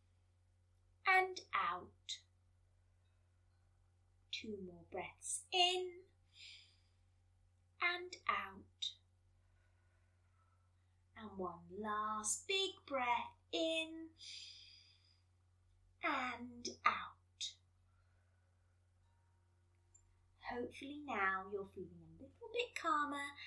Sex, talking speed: female, 60 wpm